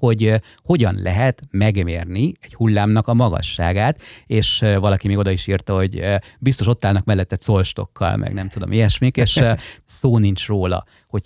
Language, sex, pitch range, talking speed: Hungarian, male, 95-120 Hz, 155 wpm